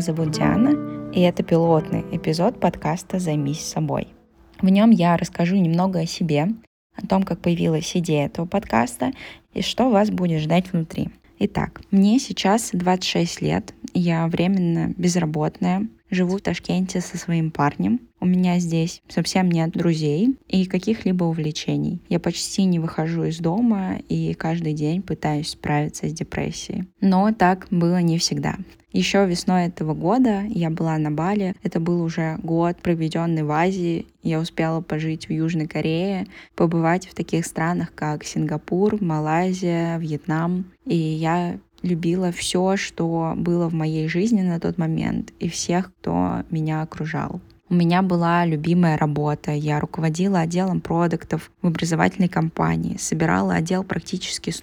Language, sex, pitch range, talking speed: Russian, female, 160-185 Hz, 145 wpm